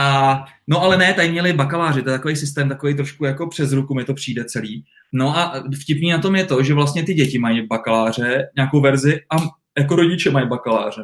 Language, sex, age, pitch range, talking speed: Czech, male, 20-39, 135-155 Hz, 215 wpm